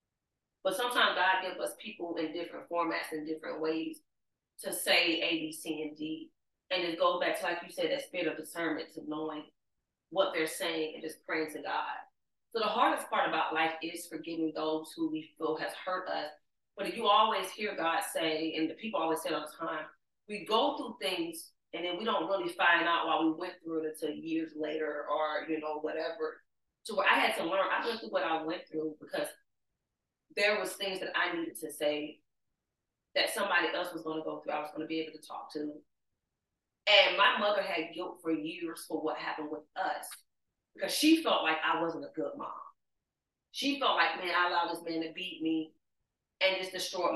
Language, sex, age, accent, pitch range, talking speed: English, female, 30-49, American, 155-185 Hz, 210 wpm